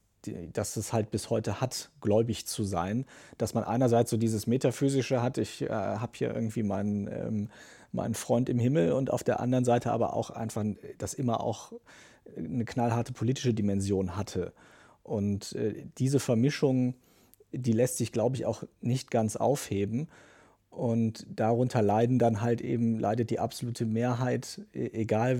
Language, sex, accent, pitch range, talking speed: German, male, German, 105-125 Hz, 160 wpm